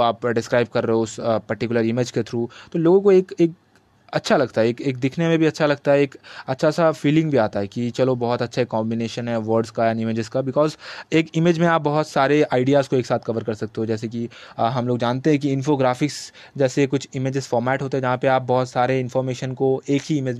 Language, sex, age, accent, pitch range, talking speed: Hindi, male, 20-39, native, 115-140 Hz, 250 wpm